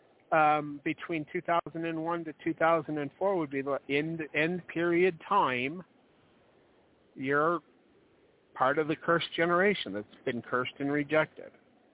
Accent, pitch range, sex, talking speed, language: American, 145-190 Hz, male, 115 wpm, English